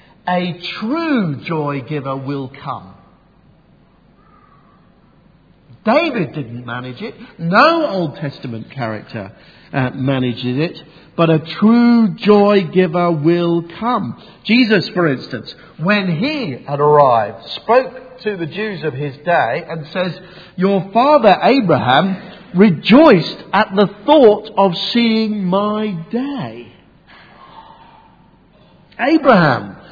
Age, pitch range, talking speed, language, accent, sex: 50-69, 160-225 Hz, 100 wpm, English, British, male